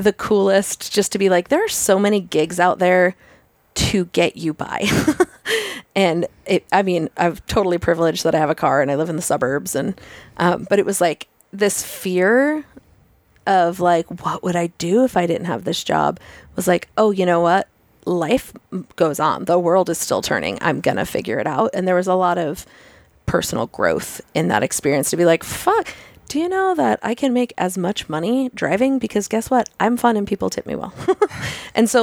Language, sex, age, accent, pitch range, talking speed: English, female, 30-49, American, 165-210 Hz, 210 wpm